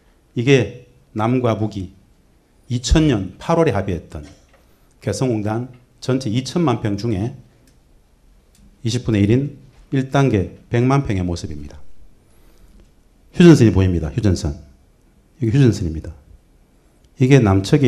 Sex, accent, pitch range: male, native, 85-130 Hz